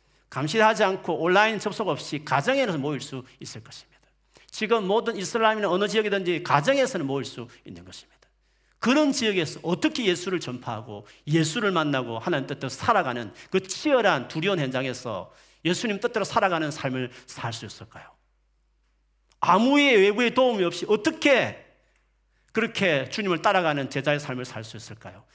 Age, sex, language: 40-59, male, Korean